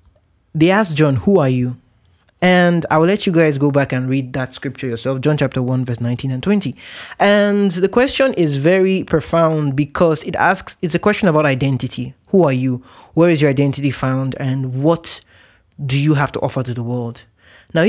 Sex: male